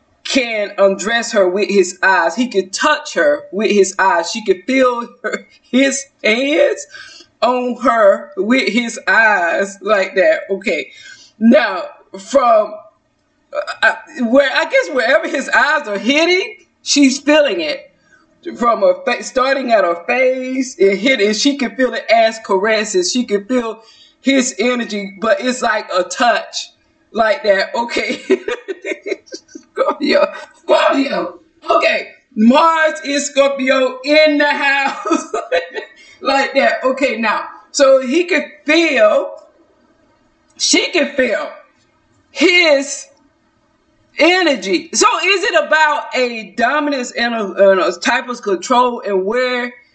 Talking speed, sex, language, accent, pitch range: 125 wpm, female, English, American, 235-310 Hz